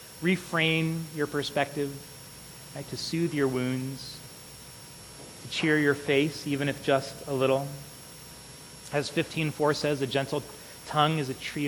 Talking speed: 130 wpm